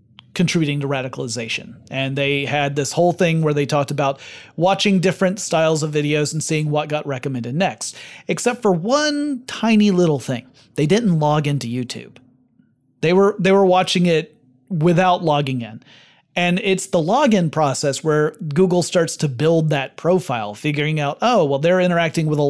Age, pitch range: 30-49, 140-185 Hz